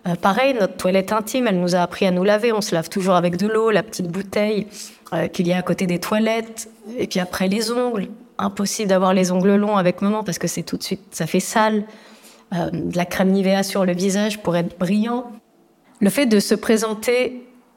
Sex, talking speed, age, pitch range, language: female, 225 wpm, 30-49, 185-225 Hz, French